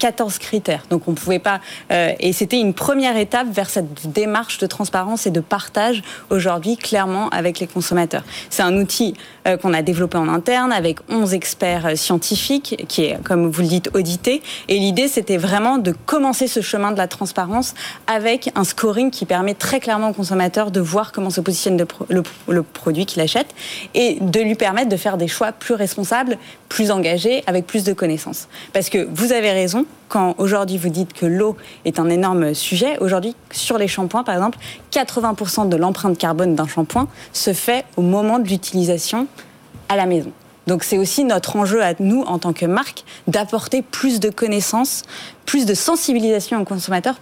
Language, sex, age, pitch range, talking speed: French, female, 20-39, 180-225 Hz, 190 wpm